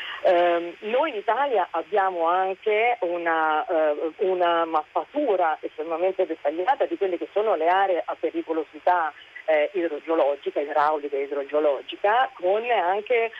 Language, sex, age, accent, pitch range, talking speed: Italian, female, 40-59, native, 160-190 Hz, 115 wpm